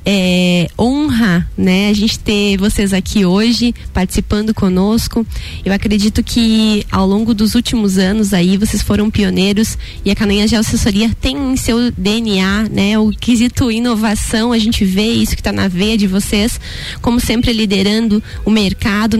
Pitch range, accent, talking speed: 200-240 Hz, Brazilian, 155 wpm